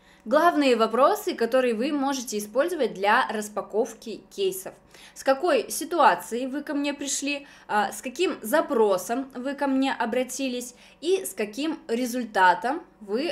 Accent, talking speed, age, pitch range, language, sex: native, 125 wpm, 20-39, 205-265 Hz, Russian, female